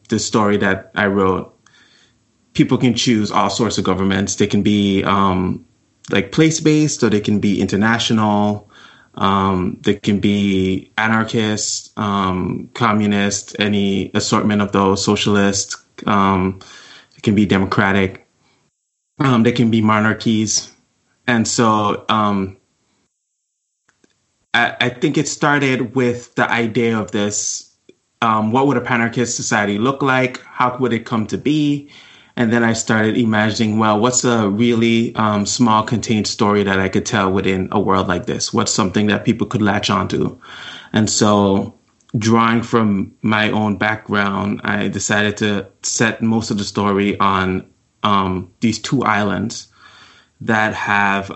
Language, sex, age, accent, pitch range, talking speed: English, male, 20-39, American, 100-115 Hz, 145 wpm